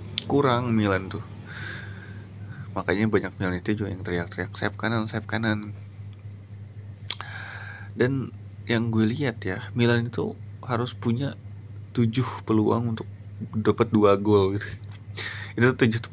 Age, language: 20-39, Indonesian